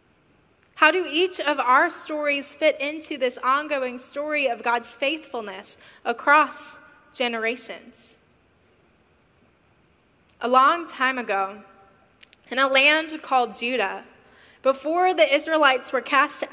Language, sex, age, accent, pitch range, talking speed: English, female, 10-29, American, 230-280 Hz, 110 wpm